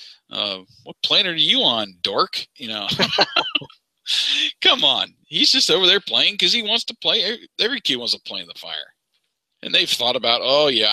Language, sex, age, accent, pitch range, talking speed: English, male, 40-59, American, 115-155 Hz, 200 wpm